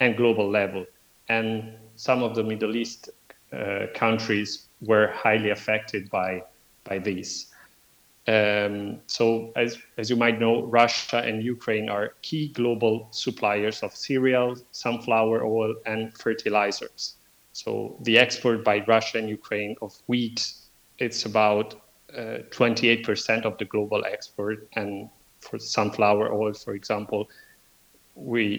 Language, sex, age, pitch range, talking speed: English, male, 40-59, 105-115 Hz, 130 wpm